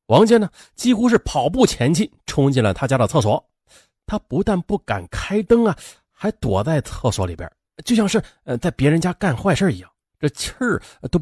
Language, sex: Chinese, male